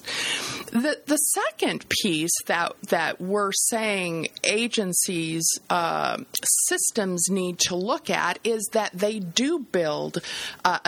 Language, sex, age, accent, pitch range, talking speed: English, female, 50-69, American, 155-210 Hz, 115 wpm